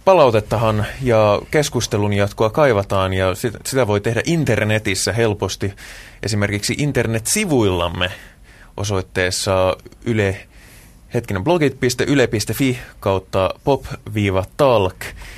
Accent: native